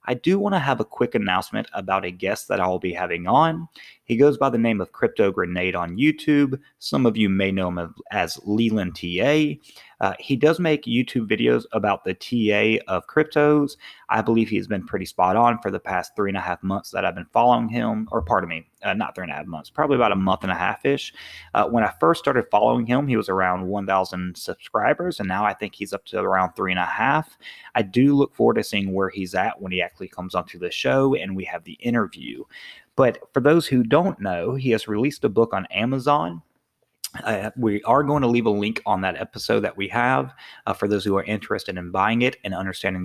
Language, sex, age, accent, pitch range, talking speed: English, male, 20-39, American, 95-125 Hz, 230 wpm